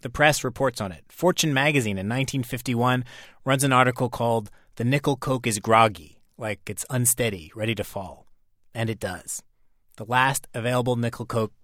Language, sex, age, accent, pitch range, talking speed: English, male, 30-49, American, 110-155 Hz, 165 wpm